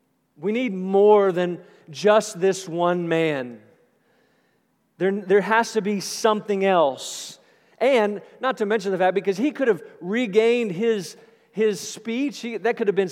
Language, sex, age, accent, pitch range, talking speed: English, male, 40-59, American, 185-225 Hz, 150 wpm